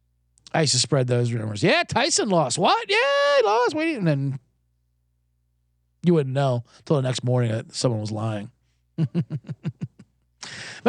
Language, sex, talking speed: English, male, 150 wpm